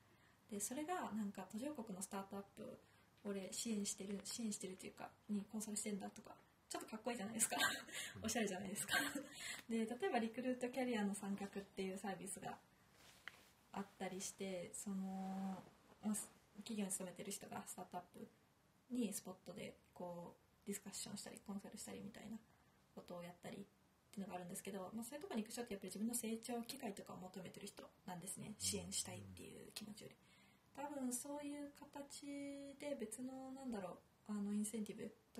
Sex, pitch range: female, 195-235 Hz